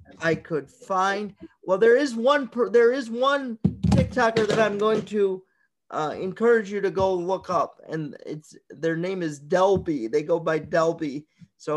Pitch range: 165-200 Hz